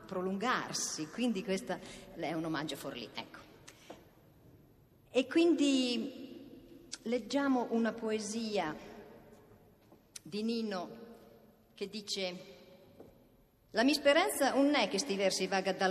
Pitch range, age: 165-225 Hz, 50-69